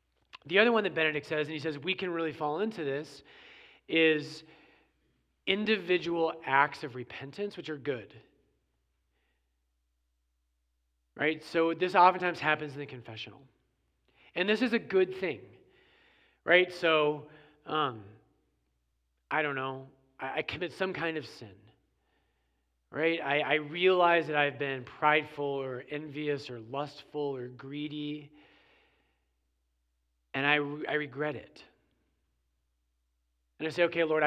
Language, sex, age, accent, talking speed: English, male, 40-59, American, 130 wpm